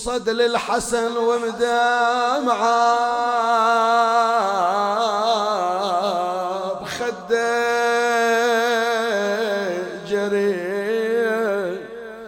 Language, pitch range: Arabic, 200-235 Hz